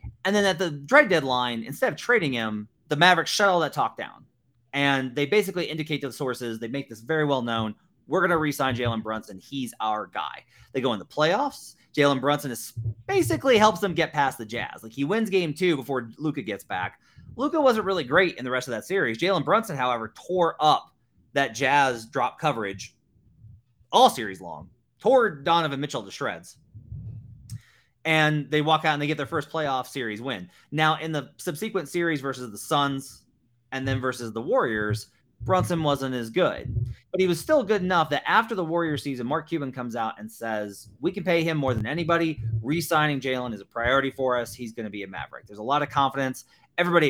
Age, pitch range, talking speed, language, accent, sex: 30-49, 120-155 Hz, 205 wpm, English, American, male